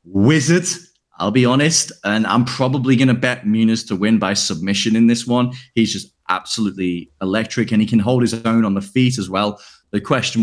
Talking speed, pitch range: 195 wpm, 95-125 Hz